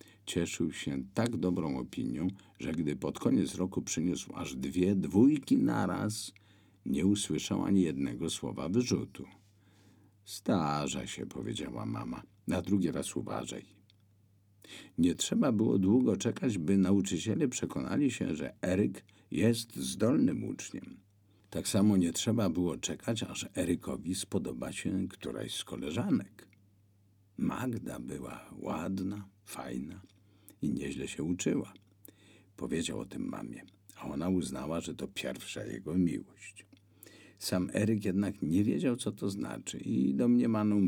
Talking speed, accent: 125 wpm, native